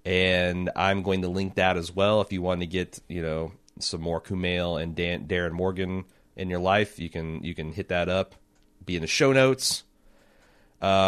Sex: male